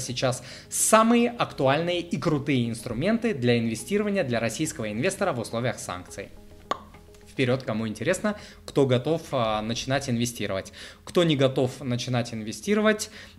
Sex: male